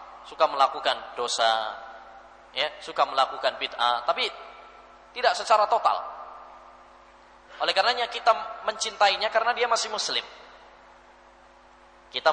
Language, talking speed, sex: English, 95 wpm, male